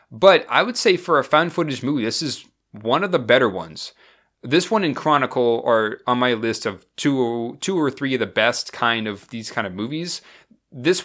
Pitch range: 110-160 Hz